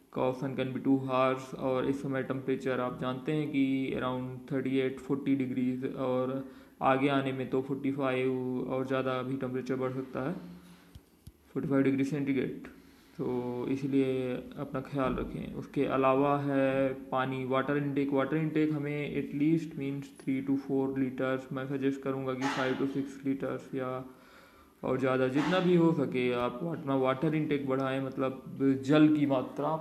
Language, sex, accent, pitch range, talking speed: Hindi, male, native, 130-145 Hz, 160 wpm